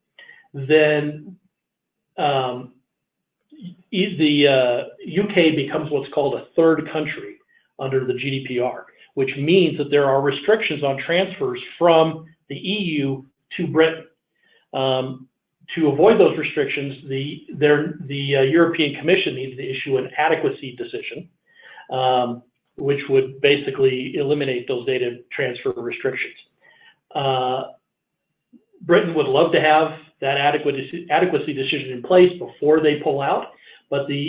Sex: male